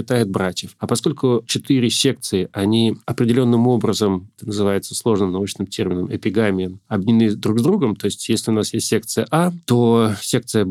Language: Russian